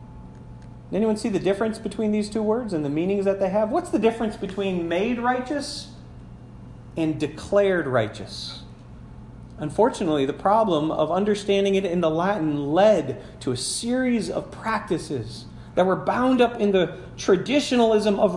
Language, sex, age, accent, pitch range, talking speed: English, male, 40-59, American, 155-220 Hz, 150 wpm